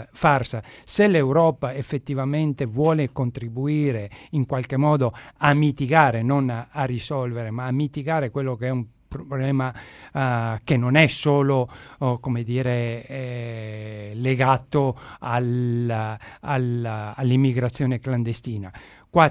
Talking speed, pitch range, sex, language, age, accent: 120 wpm, 125-145 Hz, male, Italian, 50-69, native